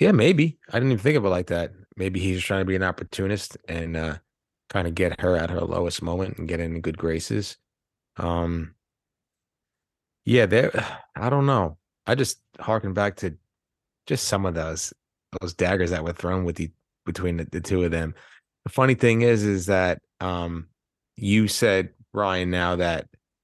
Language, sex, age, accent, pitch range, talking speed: English, male, 30-49, American, 85-100 Hz, 185 wpm